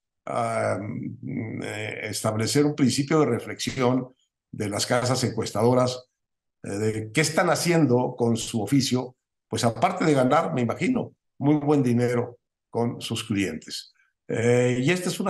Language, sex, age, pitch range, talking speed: Spanish, male, 60-79, 110-135 Hz, 140 wpm